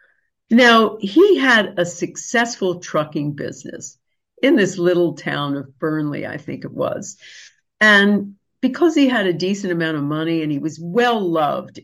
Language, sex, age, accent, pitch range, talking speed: English, female, 50-69, American, 160-235 Hz, 150 wpm